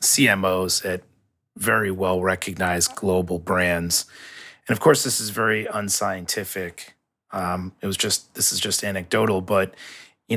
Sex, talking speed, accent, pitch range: male, 140 wpm, American, 90-105 Hz